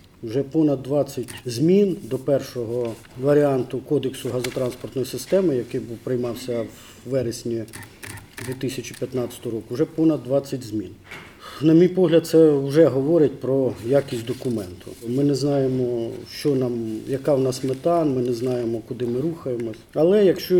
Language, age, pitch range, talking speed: Ukrainian, 40-59, 120-150 Hz, 135 wpm